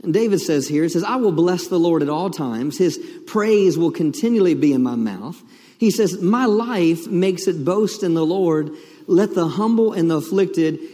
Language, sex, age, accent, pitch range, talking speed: English, male, 40-59, American, 190-245 Hz, 210 wpm